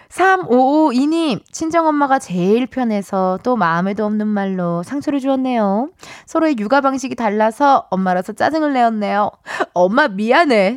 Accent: native